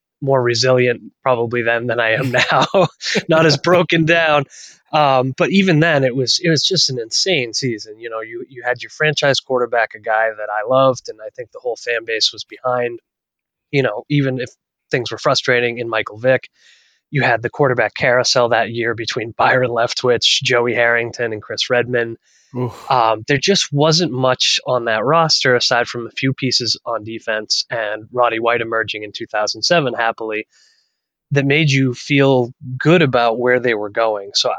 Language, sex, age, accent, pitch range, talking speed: English, male, 20-39, American, 115-145 Hz, 180 wpm